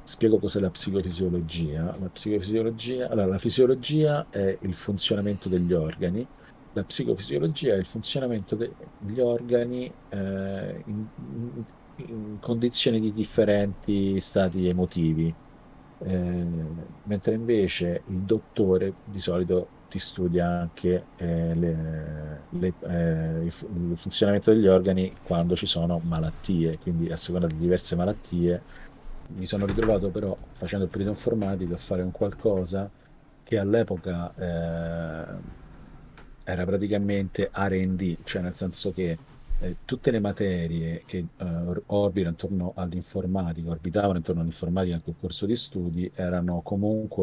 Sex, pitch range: male, 90-105 Hz